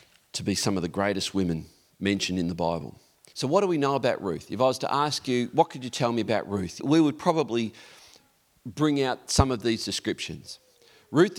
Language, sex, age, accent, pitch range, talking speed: English, male, 40-59, Australian, 105-150 Hz, 215 wpm